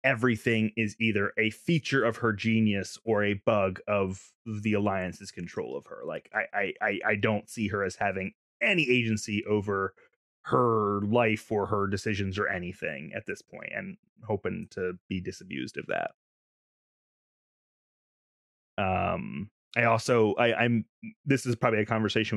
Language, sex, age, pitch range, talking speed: English, male, 20-39, 100-120 Hz, 155 wpm